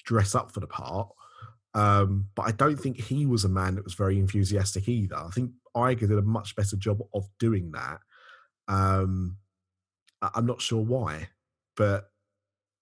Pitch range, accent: 100-120 Hz, British